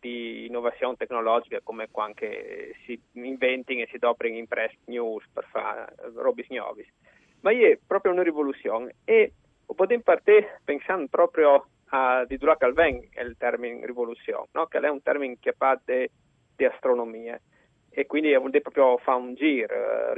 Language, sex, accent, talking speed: Italian, male, native, 140 wpm